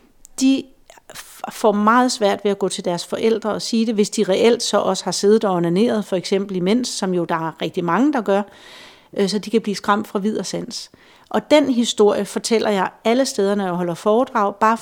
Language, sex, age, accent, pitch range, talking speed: Danish, female, 40-59, native, 190-225 Hz, 215 wpm